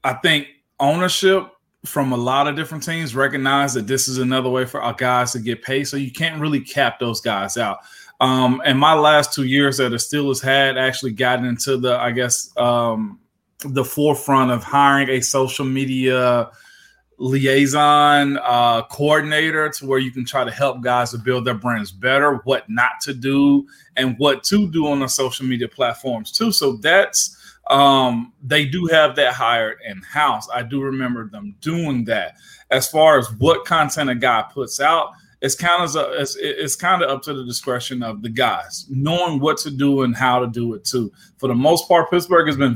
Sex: male